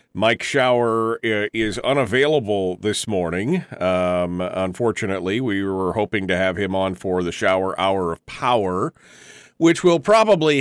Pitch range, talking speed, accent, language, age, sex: 95-130 Hz, 135 wpm, American, English, 40-59, male